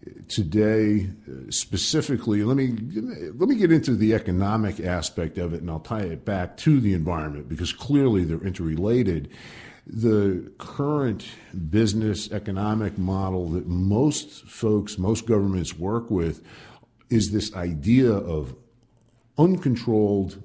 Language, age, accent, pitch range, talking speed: English, 50-69, American, 90-120 Hz, 125 wpm